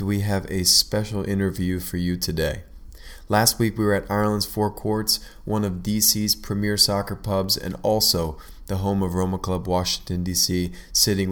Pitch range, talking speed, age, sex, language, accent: 90-105 Hz, 170 wpm, 20-39, male, English, American